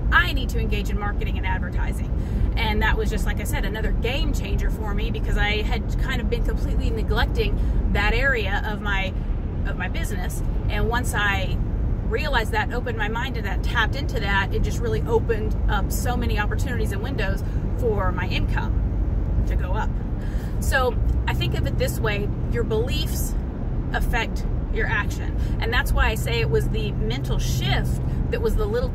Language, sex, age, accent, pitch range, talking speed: English, female, 30-49, American, 80-105 Hz, 185 wpm